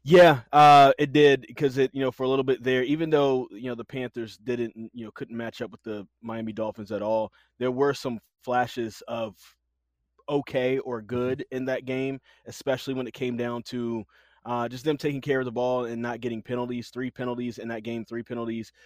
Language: English